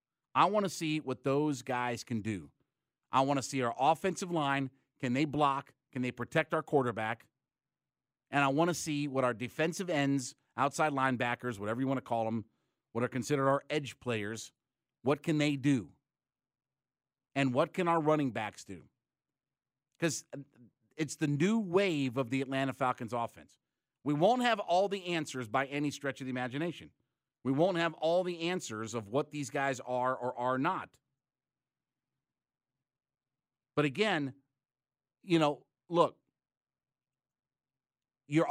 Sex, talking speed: male, 155 wpm